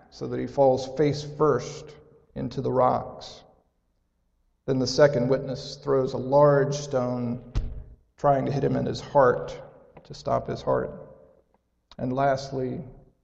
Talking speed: 135 wpm